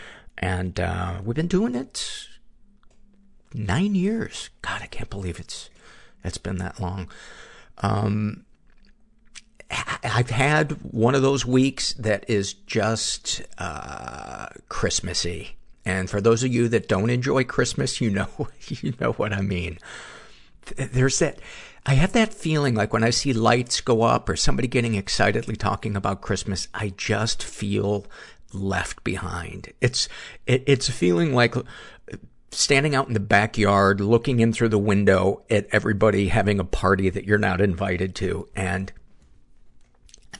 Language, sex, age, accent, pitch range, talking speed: English, male, 50-69, American, 100-130 Hz, 145 wpm